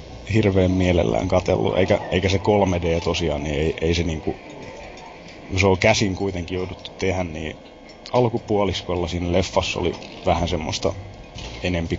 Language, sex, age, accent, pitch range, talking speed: Finnish, male, 20-39, native, 90-105 Hz, 140 wpm